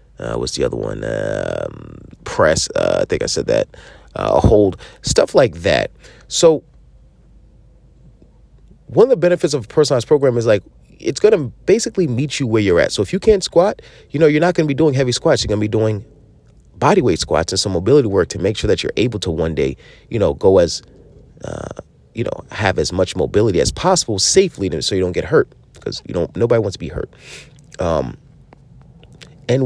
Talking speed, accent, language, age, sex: 205 wpm, American, English, 30-49, male